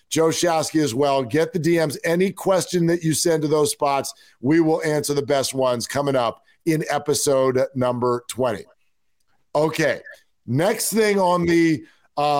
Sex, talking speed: male, 160 wpm